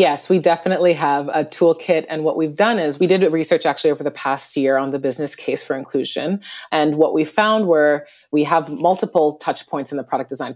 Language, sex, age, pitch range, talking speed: English, female, 30-49, 140-180 Hz, 220 wpm